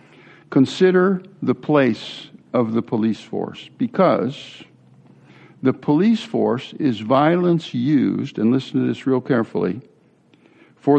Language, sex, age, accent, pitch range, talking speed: English, male, 60-79, American, 110-150 Hz, 115 wpm